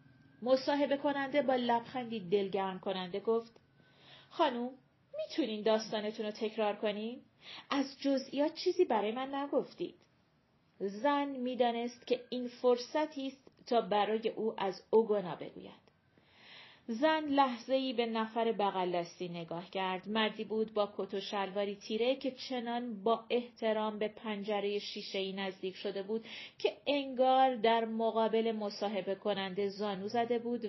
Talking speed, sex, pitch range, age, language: 125 wpm, female, 205-250 Hz, 30-49, Persian